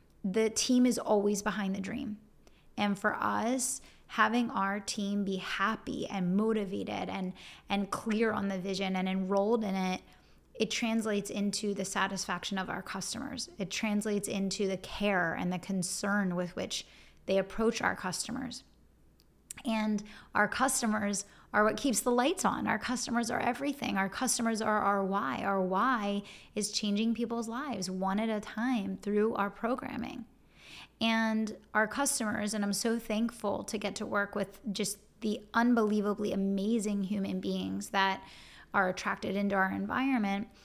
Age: 20-39